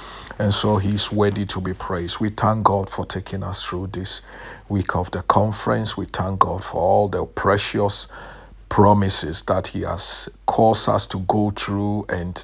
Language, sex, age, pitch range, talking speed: English, male, 50-69, 95-105 Hz, 175 wpm